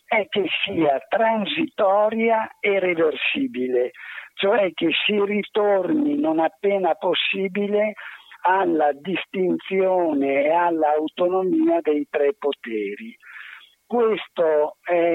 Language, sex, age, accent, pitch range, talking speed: Italian, male, 50-69, native, 155-205 Hz, 85 wpm